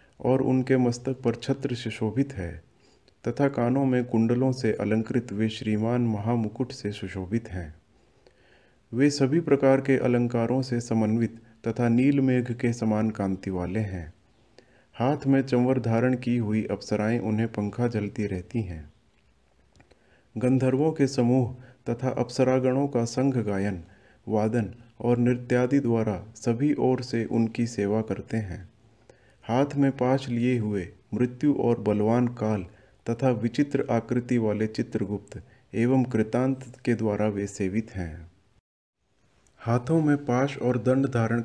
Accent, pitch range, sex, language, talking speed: native, 105-130 Hz, male, Hindi, 135 wpm